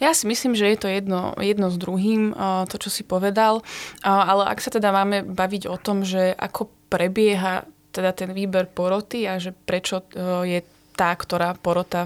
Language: Slovak